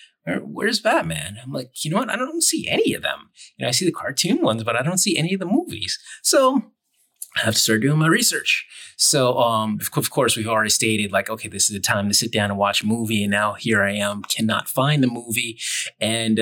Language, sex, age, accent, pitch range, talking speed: English, male, 30-49, American, 110-165 Hz, 240 wpm